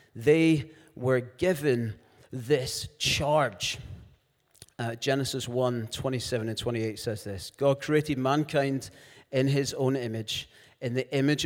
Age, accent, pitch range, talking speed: 30-49, British, 125-175 Hz, 120 wpm